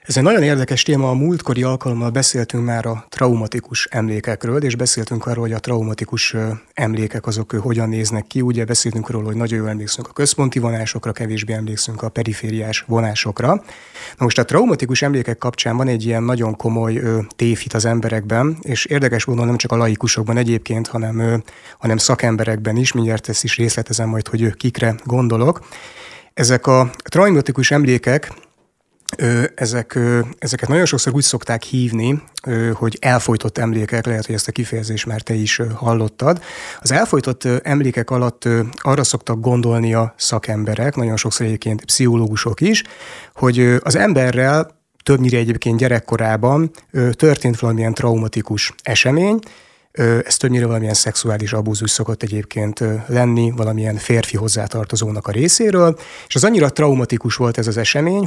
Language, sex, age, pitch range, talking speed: Hungarian, male, 30-49, 110-130 Hz, 145 wpm